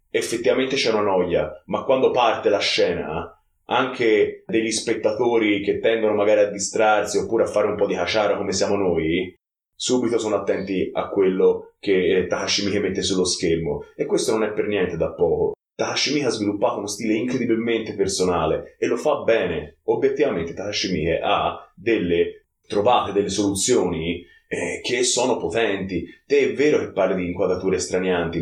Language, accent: Italian, native